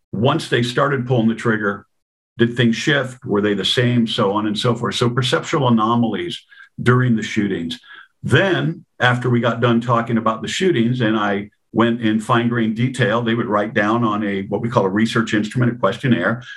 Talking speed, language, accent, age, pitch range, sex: 195 wpm, English, American, 50-69, 110-125 Hz, male